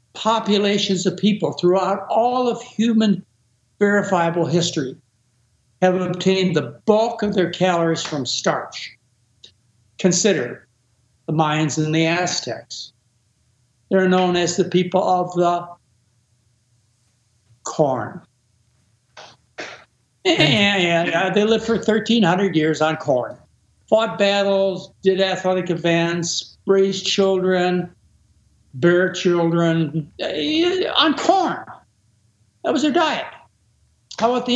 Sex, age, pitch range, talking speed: male, 60-79, 120-195 Hz, 105 wpm